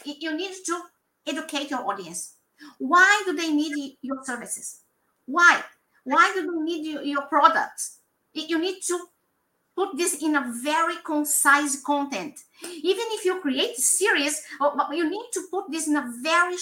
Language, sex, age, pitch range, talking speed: English, female, 50-69, 285-360 Hz, 155 wpm